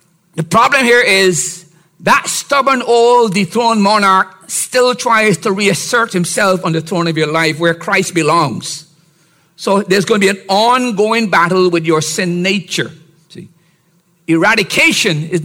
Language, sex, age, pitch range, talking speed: English, male, 50-69, 130-175 Hz, 150 wpm